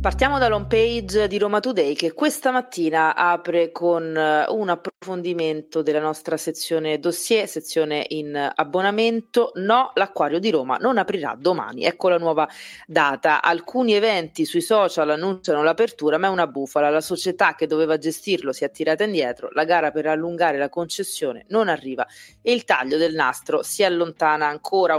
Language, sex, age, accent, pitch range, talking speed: Italian, female, 30-49, native, 155-195 Hz, 160 wpm